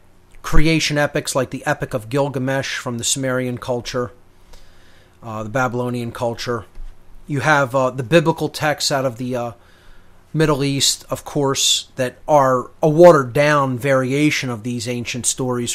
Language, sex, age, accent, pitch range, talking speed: English, male, 30-49, American, 110-135 Hz, 145 wpm